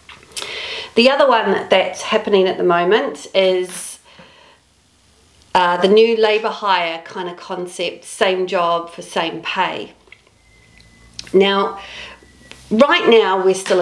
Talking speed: 115 wpm